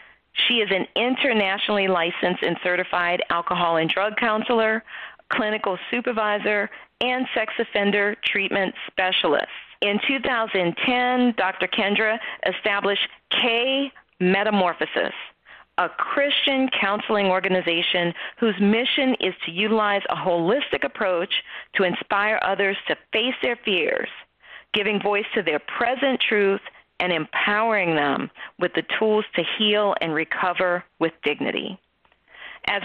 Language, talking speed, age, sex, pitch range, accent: English, 115 wpm, 40-59, female, 180-225 Hz, American